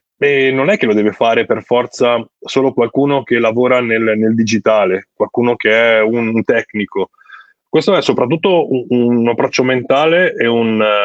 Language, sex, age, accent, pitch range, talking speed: Italian, male, 20-39, native, 110-135 Hz, 170 wpm